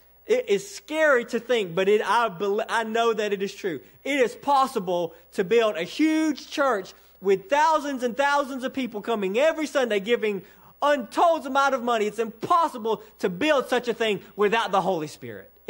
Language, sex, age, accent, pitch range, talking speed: English, male, 30-49, American, 165-250 Hz, 175 wpm